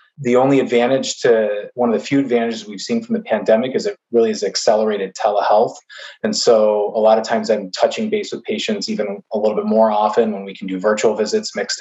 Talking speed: 225 wpm